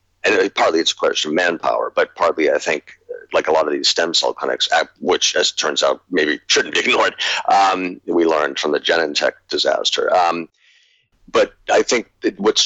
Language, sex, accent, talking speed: English, male, American, 200 wpm